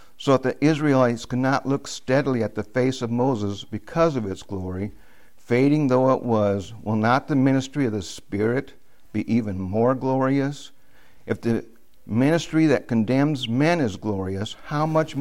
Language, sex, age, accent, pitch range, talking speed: English, male, 60-79, American, 105-130 Hz, 165 wpm